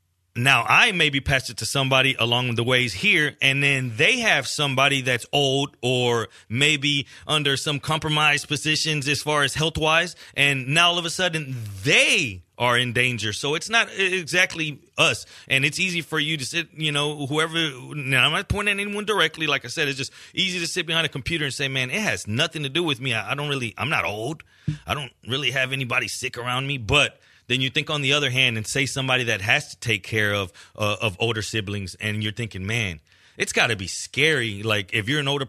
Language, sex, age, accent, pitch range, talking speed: English, male, 30-49, American, 115-150 Hz, 215 wpm